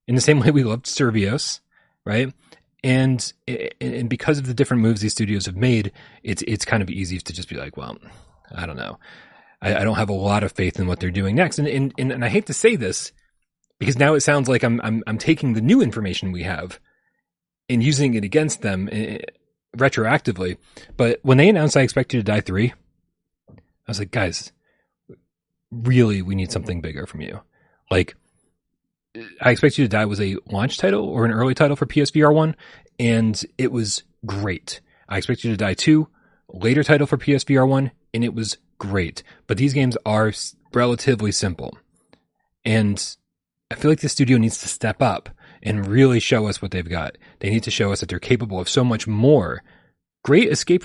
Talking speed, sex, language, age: 200 wpm, male, English, 30-49